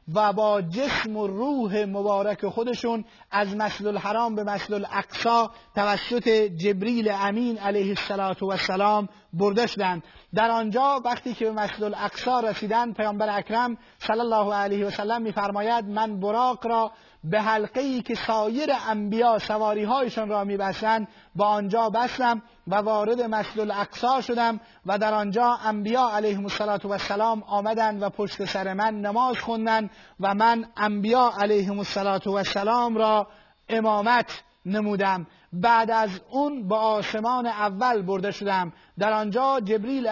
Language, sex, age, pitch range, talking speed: Persian, male, 30-49, 205-230 Hz, 140 wpm